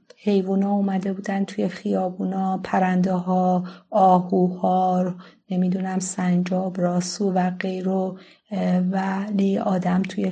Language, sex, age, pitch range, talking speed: Persian, female, 30-49, 185-205 Hz, 95 wpm